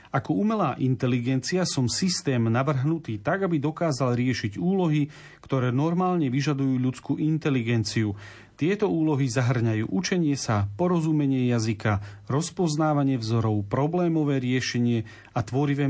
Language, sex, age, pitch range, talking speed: Slovak, male, 40-59, 120-160 Hz, 110 wpm